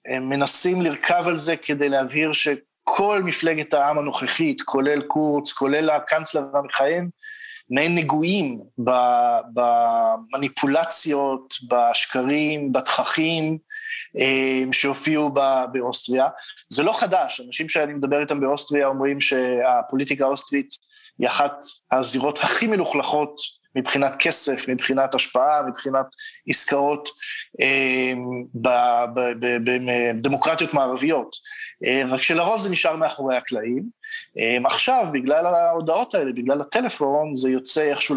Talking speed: 100 wpm